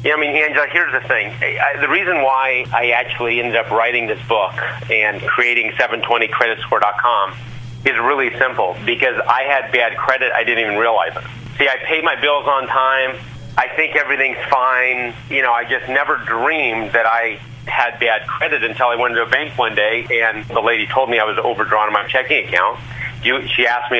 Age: 40-59